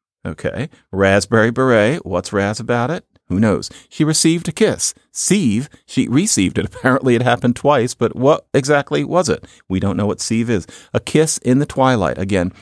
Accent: American